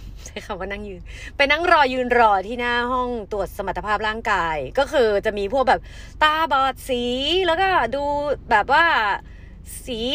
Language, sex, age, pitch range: Thai, female, 30-49, 220-315 Hz